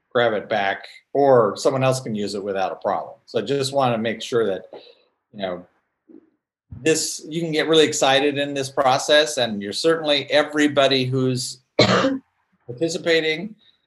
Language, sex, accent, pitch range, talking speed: English, male, American, 105-145 Hz, 160 wpm